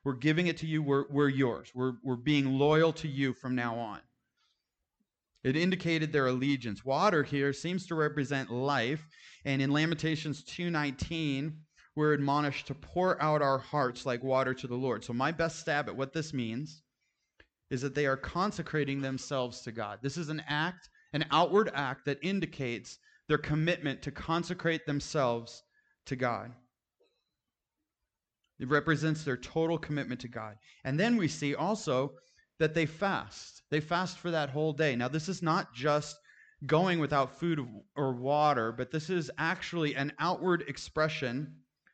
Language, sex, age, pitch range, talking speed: English, male, 30-49, 130-160 Hz, 160 wpm